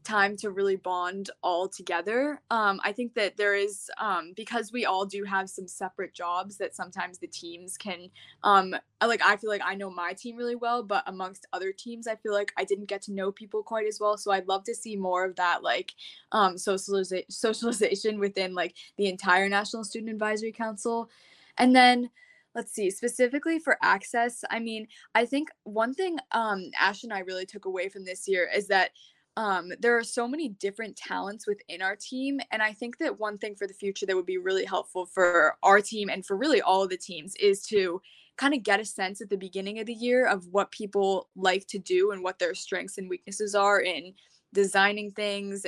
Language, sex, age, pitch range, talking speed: English, female, 10-29, 190-225 Hz, 210 wpm